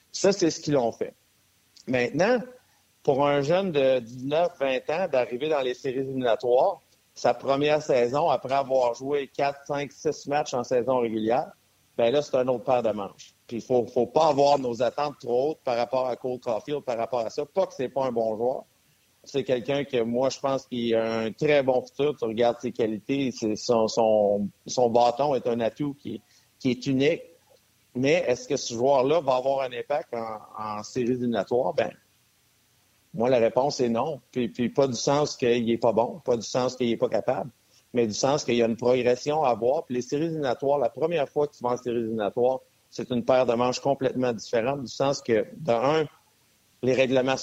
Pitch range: 115-140 Hz